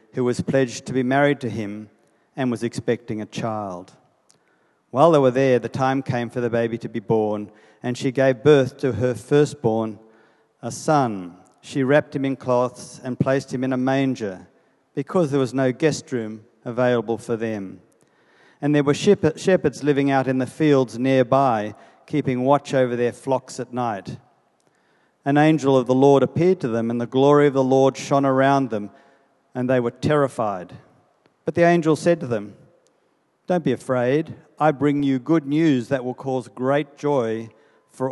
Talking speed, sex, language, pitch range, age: 180 wpm, male, English, 120-145 Hz, 50-69